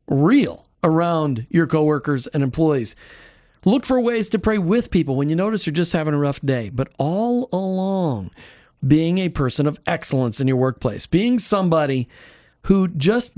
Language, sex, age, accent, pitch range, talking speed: English, male, 40-59, American, 135-190 Hz, 165 wpm